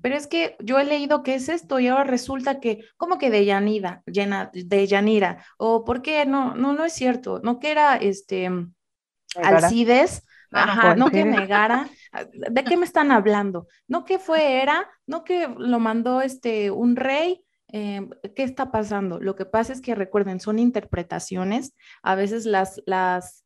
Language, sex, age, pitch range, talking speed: Spanish, female, 20-39, 190-245 Hz, 170 wpm